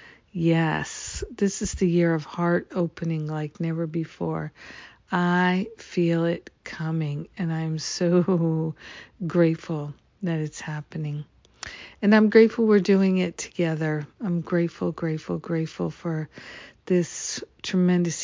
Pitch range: 160-185 Hz